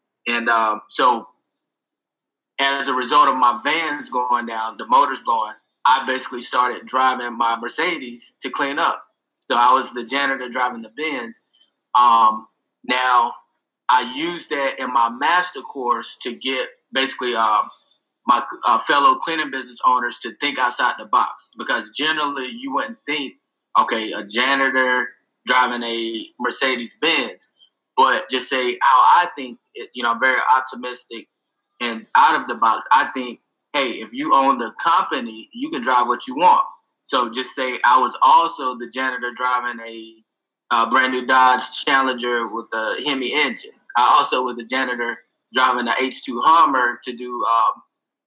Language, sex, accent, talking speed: English, male, American, 160 wpm